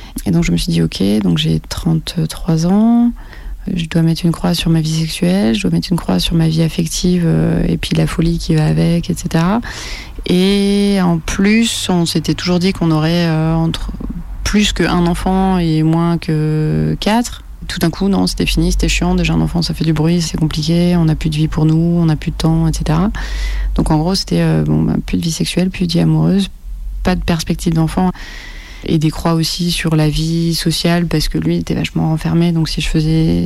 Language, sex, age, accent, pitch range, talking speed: French, female, 30-49, French, 155-175 Hz, 225 wpm